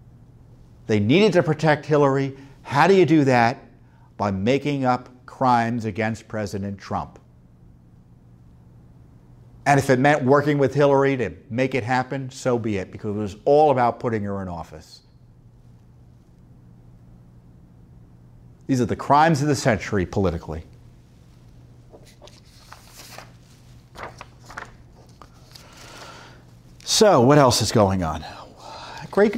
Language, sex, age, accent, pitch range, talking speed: English, male, 50-69, American, 95-140 Hz, 110 wpm